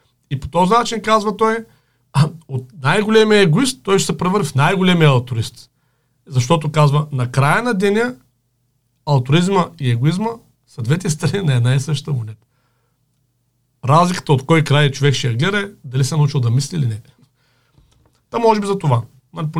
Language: Bulgarian